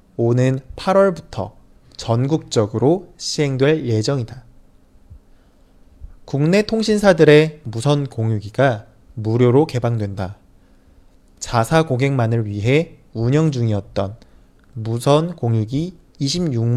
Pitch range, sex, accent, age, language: 110-150 Hz, male, Korean, 20-39, Chinese